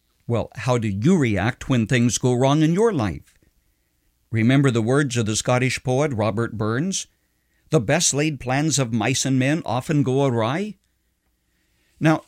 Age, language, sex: 60-79, English, male